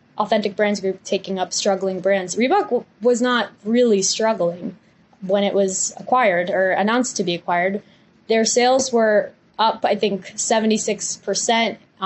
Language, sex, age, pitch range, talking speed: English, female, 10-29, 190-225 Hz, 145 wpm